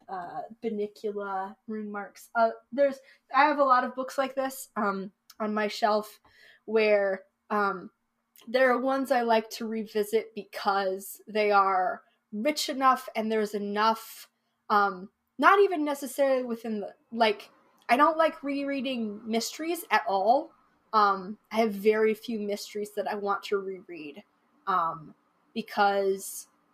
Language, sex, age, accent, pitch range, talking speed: English, female, 20-39, American, 205-255 Hz, 140 wpm